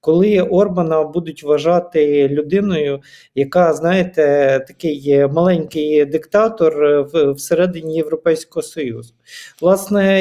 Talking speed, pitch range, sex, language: 90 wpm, 140-170 Hz, male, Ukrainian